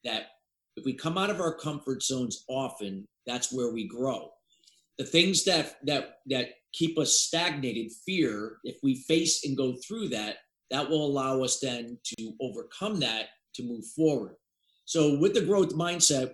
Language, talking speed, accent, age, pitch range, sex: English, 170 wpm, American, 40-59, 125-150 Hz, male